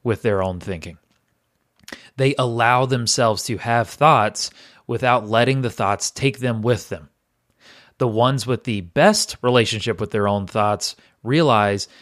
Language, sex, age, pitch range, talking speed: English, male, 30-49, 105-135 Hz, 145 wpm